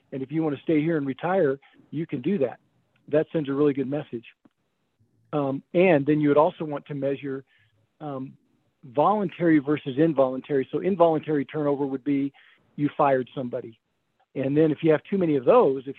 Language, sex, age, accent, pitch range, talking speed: English, male, 50-69, American, 135-155 Hz, 190 wpm